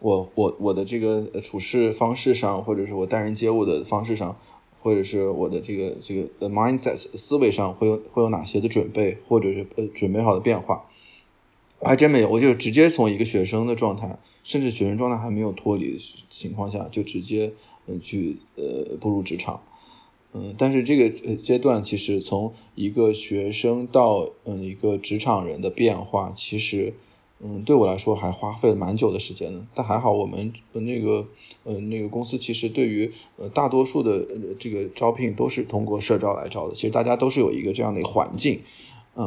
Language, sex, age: Chinese, male, 20-39